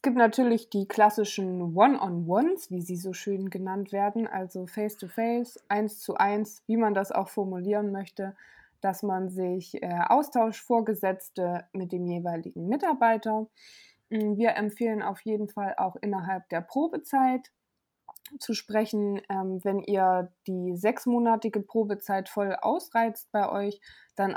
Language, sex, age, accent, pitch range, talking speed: German, female, 20-39, German, 190-225 Hz, 130 wpm